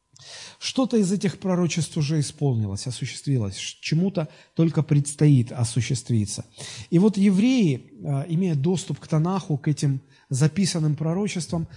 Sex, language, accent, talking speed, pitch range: male, Russian, native, 110 wpm, 135-170 Hz